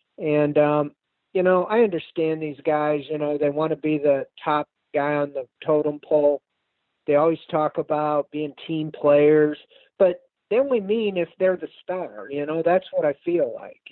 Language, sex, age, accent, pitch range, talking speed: English, male, 50-69, American, 145-180 Hz, 185 wpm